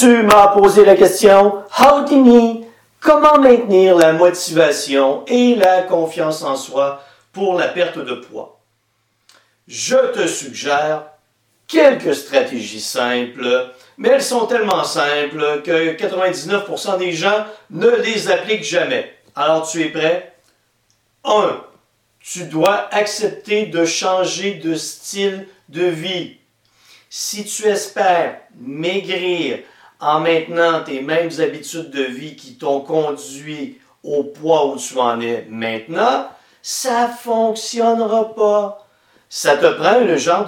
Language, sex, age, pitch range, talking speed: French, male, 50-69, 160-220 Hz, 125 wpm